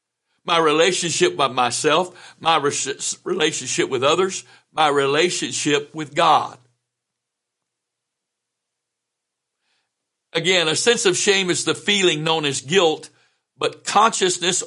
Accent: American